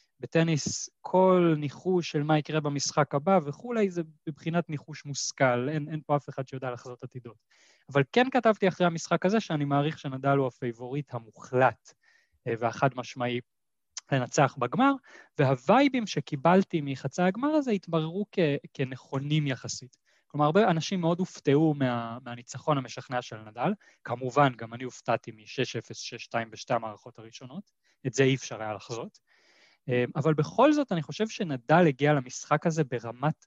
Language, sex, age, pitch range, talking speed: Hebrew, male, 20-39, 130-175 Hz, 145 wpm